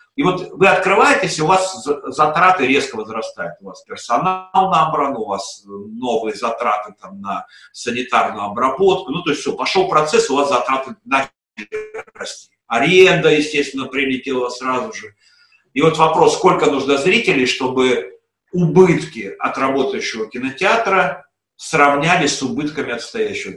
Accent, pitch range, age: native, 125-190 Hz, 50-69